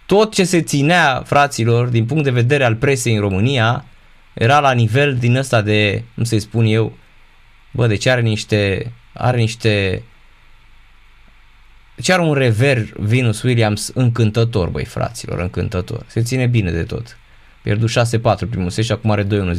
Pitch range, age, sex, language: 110-145 Hz, 20-39, male, Romanian